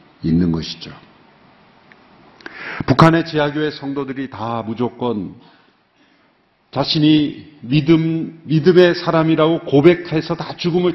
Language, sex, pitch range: Korean, male, 130-175 Hz